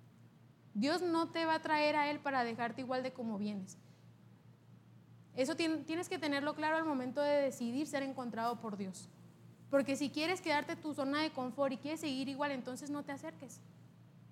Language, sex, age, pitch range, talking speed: Spanish, female, 20-39, 250-305 Hz, 180 wpm